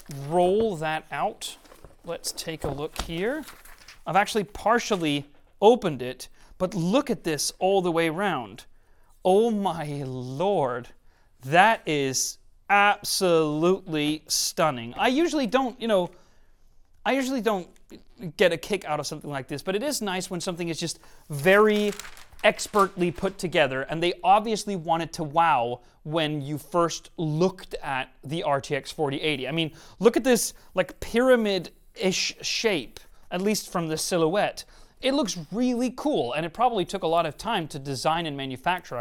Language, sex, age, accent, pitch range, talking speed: English, male, 30-49, American, 155-210 Hz, 150 wpm